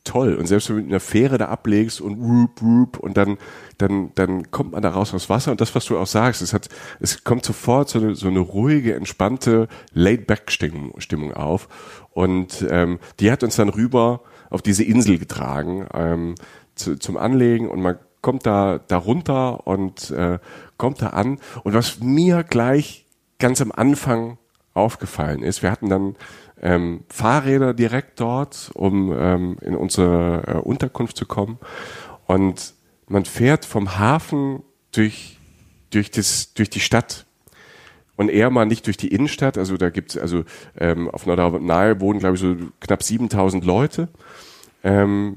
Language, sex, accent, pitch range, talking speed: German, male, German, 90-120 Hz, 170 wpm